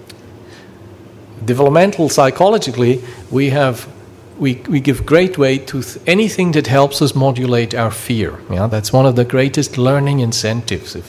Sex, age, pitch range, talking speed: male, 50-69, 110-130 Hz, 145 wpm